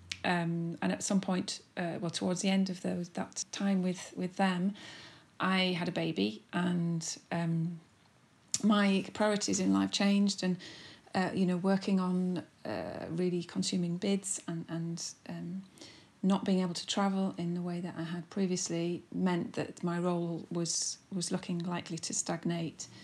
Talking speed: 165 wpm